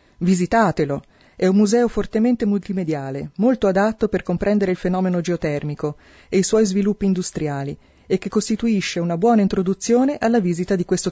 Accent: native